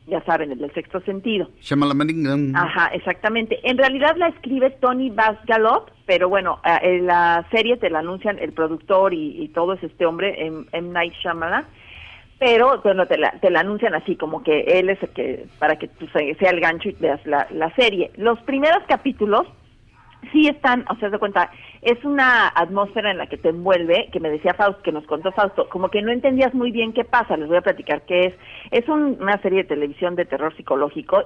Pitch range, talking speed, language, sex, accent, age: 165-230 Hz, 200 wpm, Spanish, female, Mexican, 40-59